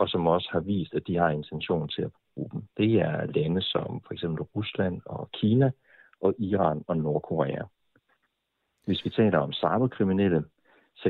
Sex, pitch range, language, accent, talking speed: male, 80-100 Hz, Danish, native, 175 wpm